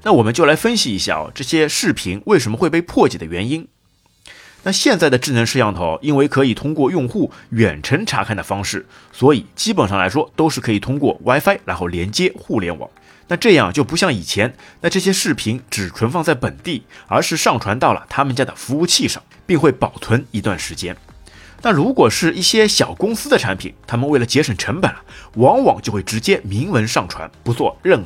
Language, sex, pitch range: Chinese, male, 100-145 Hz